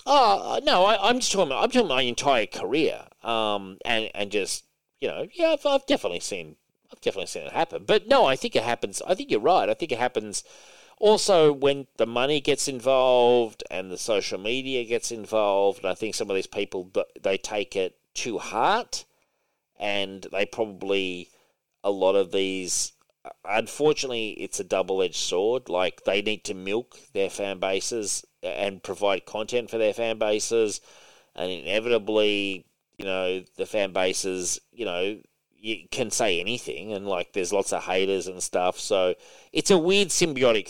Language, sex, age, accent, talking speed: English, male, 40-59, Australian, 180 wpm